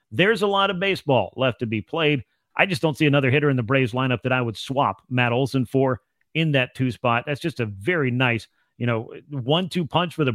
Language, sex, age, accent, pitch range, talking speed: English, male, 40-59, American, 130-160 Hz, 240 wpm